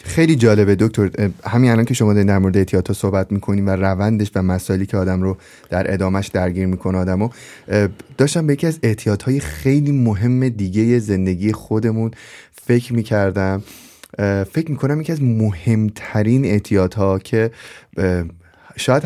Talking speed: 140 wpm